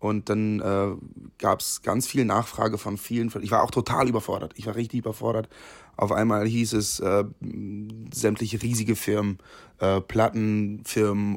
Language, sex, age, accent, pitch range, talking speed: German, male, 30-49, German, 105-125 Hz, 155 wpm